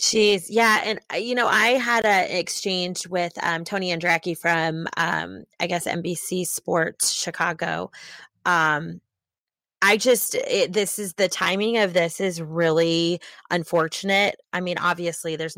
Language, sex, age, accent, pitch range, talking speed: English, female, 20-39, American, 160-190 Hz, 145 wpm